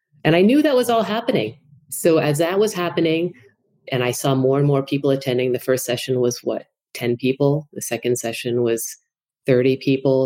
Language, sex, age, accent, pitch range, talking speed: English, female, 30-49, American, 120-145 Hz, 195 wpm